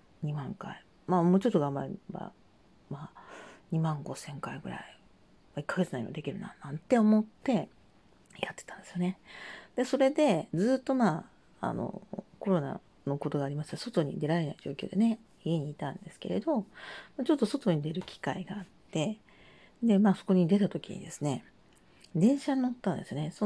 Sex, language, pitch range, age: female, Japanese, 160-215 Hz, 40-59